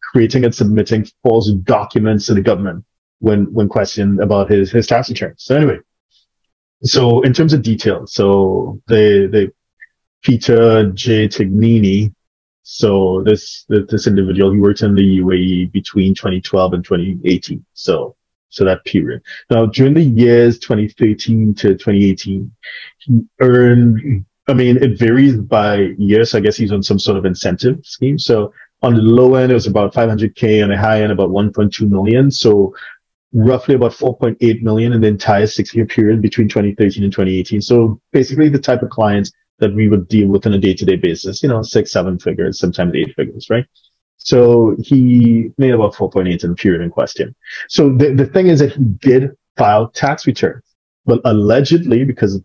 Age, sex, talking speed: 30-49, male, 170 wpm